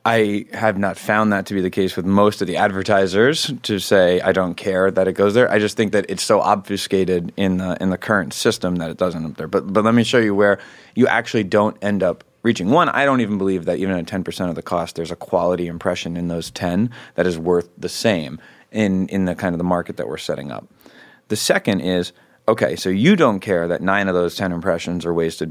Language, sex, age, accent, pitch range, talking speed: English, male, 30-49, American, 90-105 Hz, 245 wpm